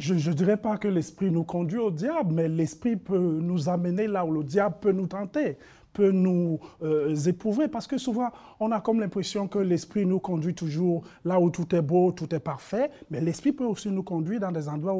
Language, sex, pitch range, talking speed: French, male, 170-215 Hz, 220 wpm